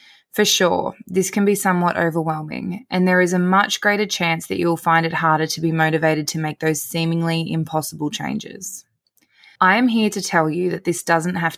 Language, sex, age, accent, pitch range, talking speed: English, female, 20-39, Australian, 160-185 Hz, 200 wpm